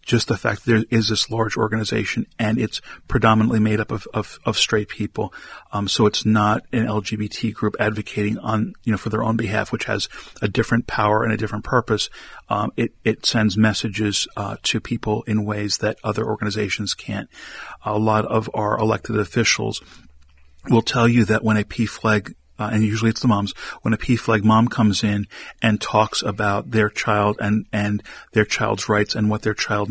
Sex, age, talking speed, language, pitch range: male, 40-59, 195 wpm, English, 105-110 Hz